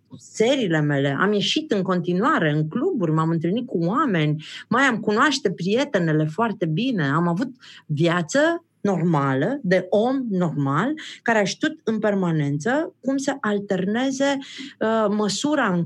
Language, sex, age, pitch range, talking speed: Romanian, female, 30-49, 145-210 Hz, 135 wpm